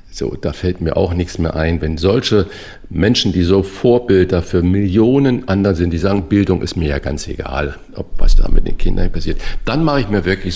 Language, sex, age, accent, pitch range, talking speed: German, male, 50-69, German, 85-100 Hz, 215 wpm